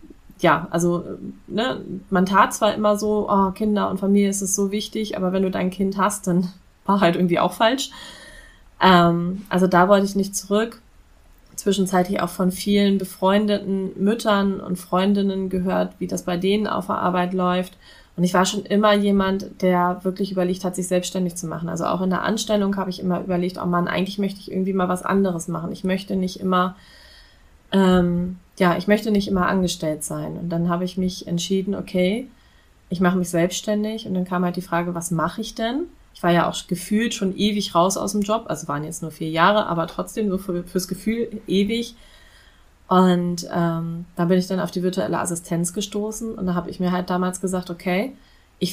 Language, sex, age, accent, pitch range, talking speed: German, female, 20-39, German, 180-200 Hz, 200 wpm